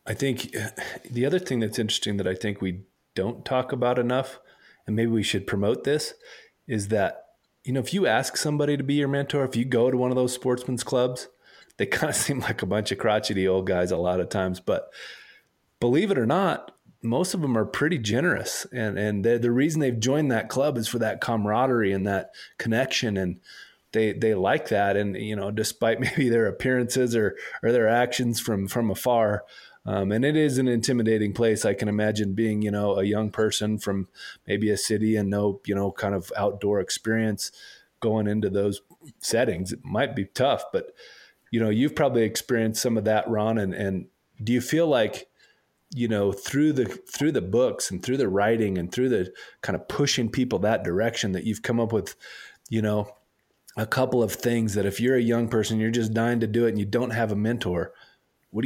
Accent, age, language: American, 30-49, English